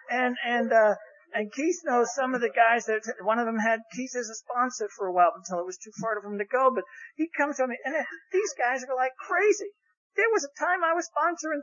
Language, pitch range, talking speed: English, 195-305 Hz, 260 wpm